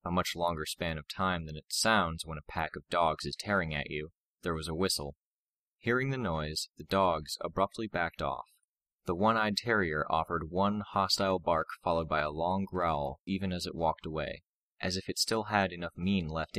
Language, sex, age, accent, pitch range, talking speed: English, male, 20-39, American, 80-95 Hz, 200 wpm